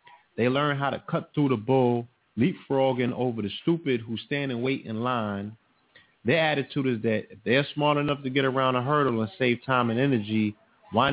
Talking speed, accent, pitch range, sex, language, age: 200 wpm, American, 110-140 Hz, male, English, 30-49